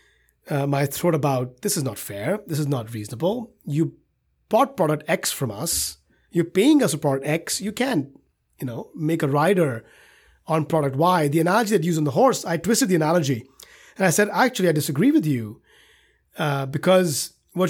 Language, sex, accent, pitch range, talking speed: English, male, Indian, 140-190 Hz, 195 wpm